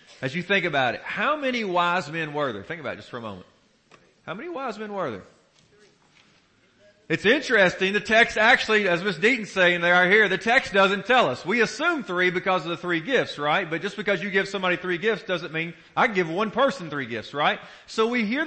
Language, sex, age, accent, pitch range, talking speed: English, male, 40-59, American, 155-200 Hz, 230 wpm